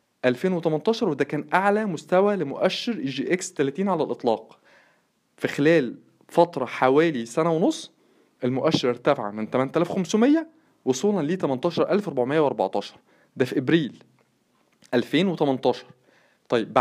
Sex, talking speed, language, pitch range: male, 100 wpm, Arabic, 135-195 Hz